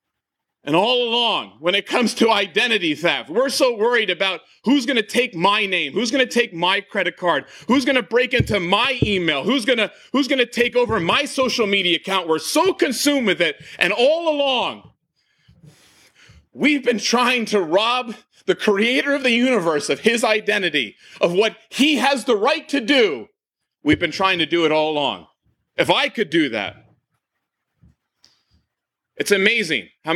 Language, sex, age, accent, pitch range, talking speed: English, male, 40-59, American, 190-270 Hz, 170 wpm